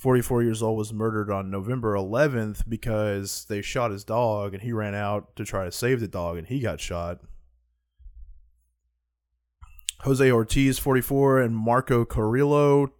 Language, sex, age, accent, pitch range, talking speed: English, male, 20-39, American, 100-125 Hz, 150 wpm